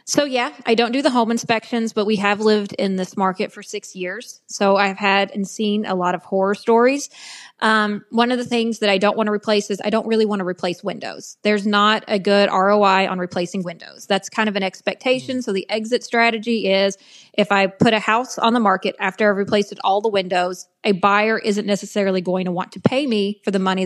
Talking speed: 230 wpm